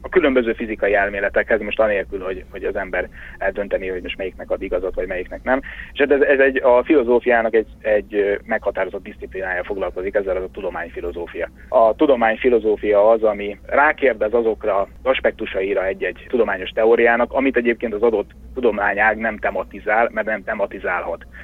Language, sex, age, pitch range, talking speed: Hungarian, male, 30-49, 110-130 Hz, 150 wpm